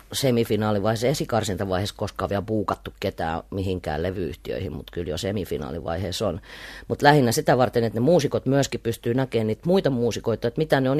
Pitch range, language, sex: 110-150 Hz, Finnish, female